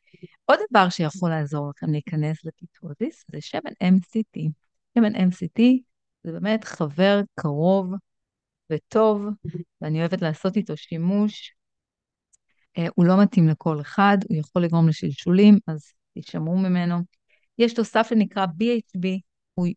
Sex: female